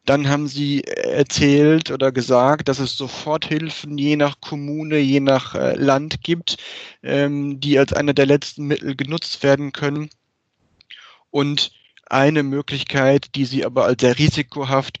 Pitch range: 125-150 Hz